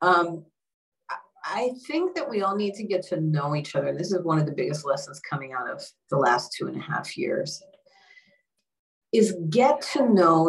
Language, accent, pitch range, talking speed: English, American, 145-185 Hz, 195 wpm